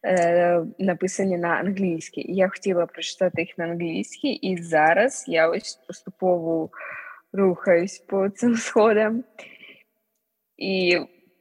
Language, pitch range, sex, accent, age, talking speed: Ukrainian, 165-190 Hz, female, native, 20-39, 100 wpm